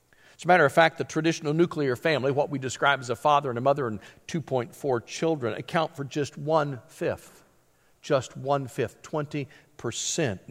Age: 50-69